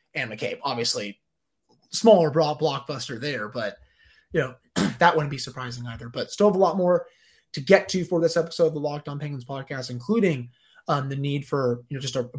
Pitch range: 130-165 Hz